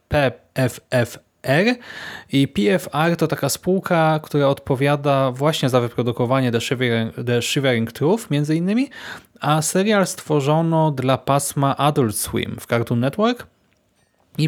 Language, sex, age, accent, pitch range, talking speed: Polish, male, 20-39, native, 120-160 Hz, 115 wpm